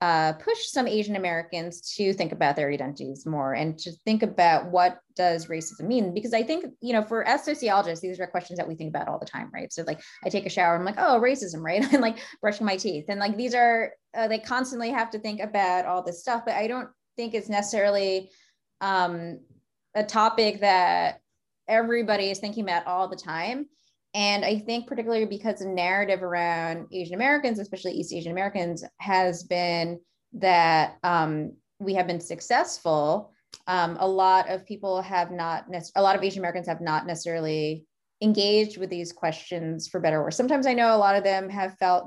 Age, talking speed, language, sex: 20-39, 200 wpm, English, female